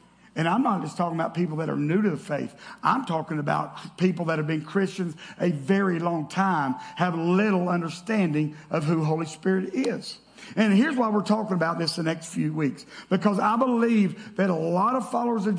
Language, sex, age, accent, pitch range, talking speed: English, male, 50-69, American, 175-235 Hz, 205 wpm